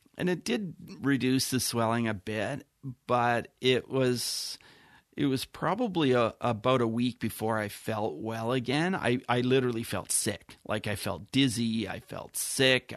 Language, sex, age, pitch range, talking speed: English, male, 40-59, 110-130 Hz, 160 wpm